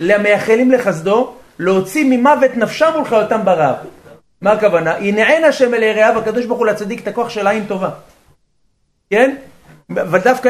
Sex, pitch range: male, 170-235 Hz